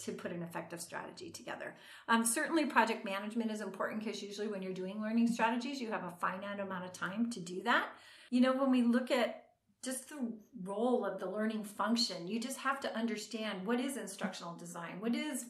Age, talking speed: 40-59, 205 wpm